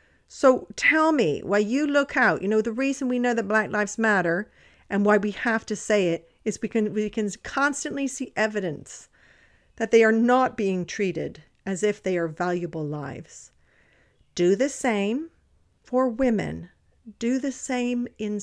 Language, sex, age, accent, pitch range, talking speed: English, female, 50-69, American, 170-225 Hz, 175 wpm